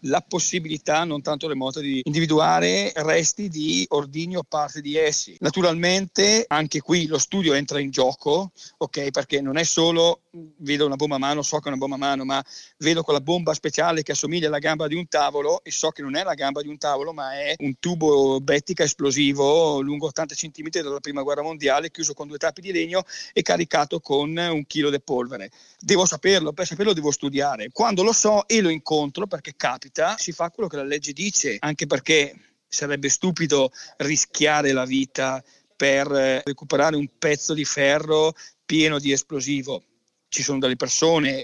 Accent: native